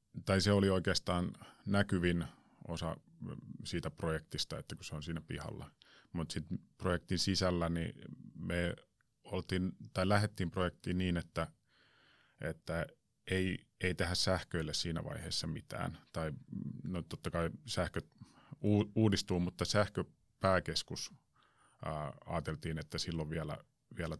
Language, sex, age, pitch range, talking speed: Finnish, male, 30-49, 80-95 Hz, 110 wpm